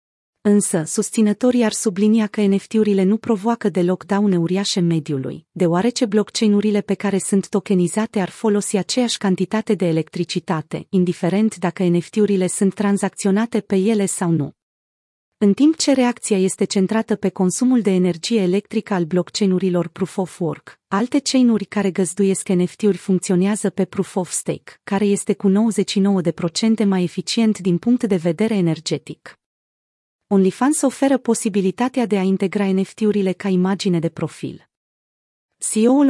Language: Romanian